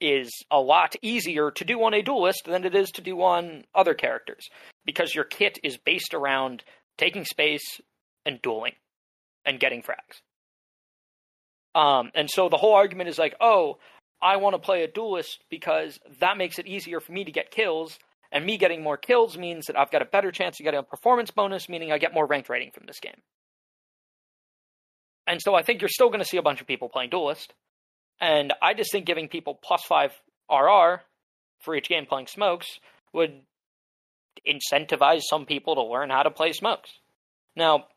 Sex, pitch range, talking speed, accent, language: male, 145-195 Hz, 190 wpm, American, English